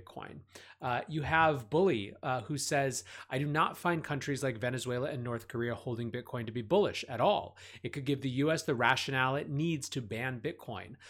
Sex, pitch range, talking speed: male, 125-160 Hz, 195 wpm